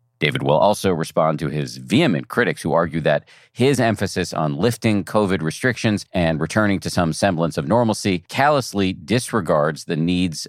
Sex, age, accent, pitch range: male, 40-59, American, 80-105 Hz